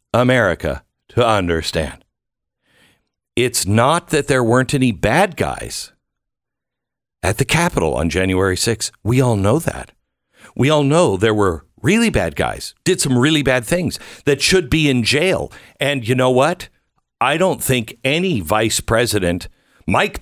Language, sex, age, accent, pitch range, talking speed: English, male, 60-79, American, 115-175 Hz, 150 wpm